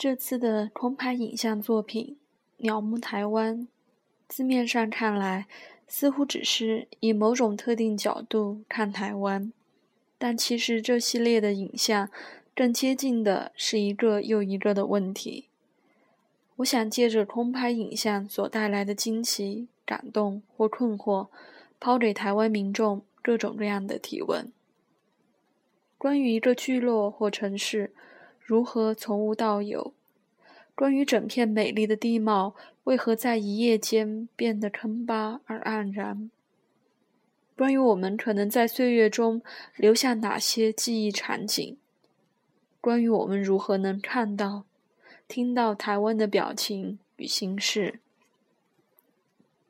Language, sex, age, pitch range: Chinese, female, 20-39, 210-240 Hz